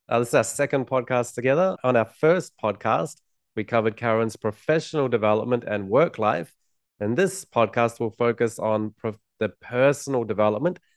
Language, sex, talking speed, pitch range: English, male, 155 wpm, 105-120 Hz